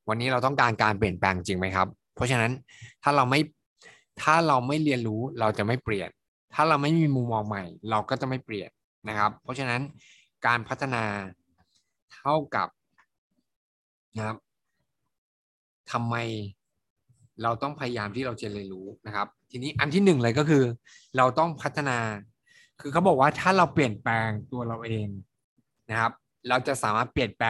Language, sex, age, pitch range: Thai, male, 20-39, 110-130 Hz